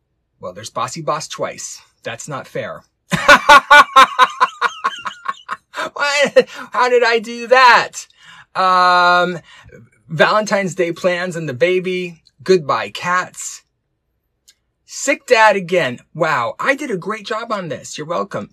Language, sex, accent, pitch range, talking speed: English, male, American, 120-190 Hz, 115 wpm